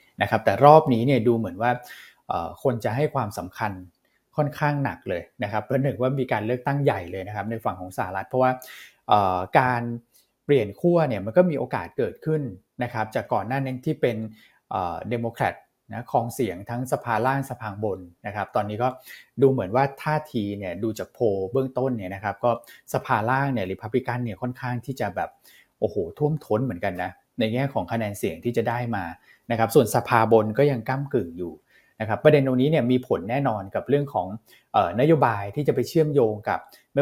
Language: Thai